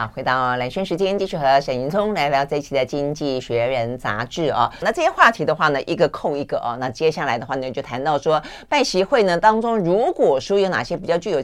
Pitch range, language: 135-205 Hz, Chinese